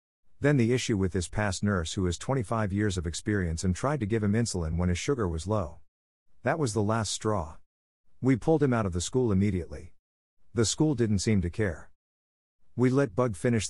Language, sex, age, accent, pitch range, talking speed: English, male, 50-69, American, 90-115 Hz, 205 wpm